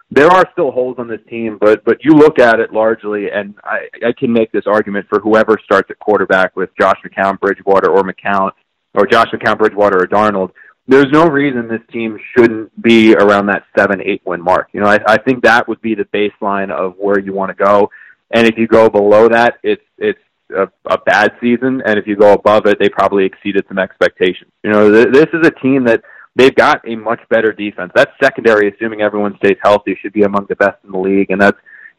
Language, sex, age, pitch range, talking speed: English, male, 20-39, 100-115 Hz, 225 wpm